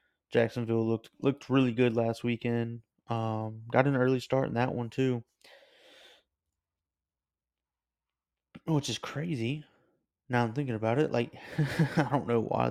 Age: 20-39